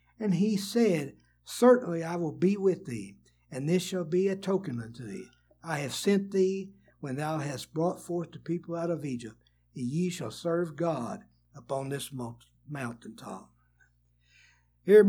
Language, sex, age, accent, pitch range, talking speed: English, male, 60-79, American, 125-175 Hz, 160 wpm